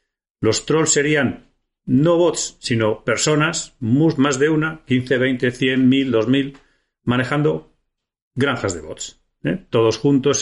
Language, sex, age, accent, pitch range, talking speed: Spanish, male, 40-59, Spanish, 110-150 Hz, 125 wpm